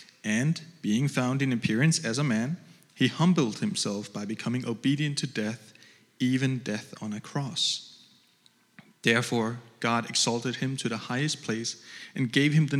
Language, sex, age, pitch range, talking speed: English, male, 30-49, 115-155 Hz, 155 wpm